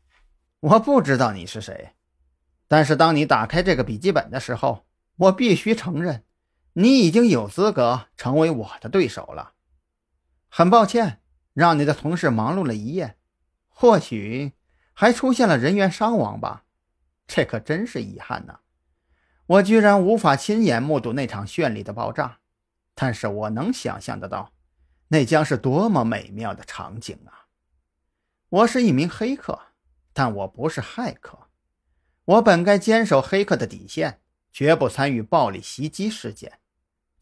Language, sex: Chinese, male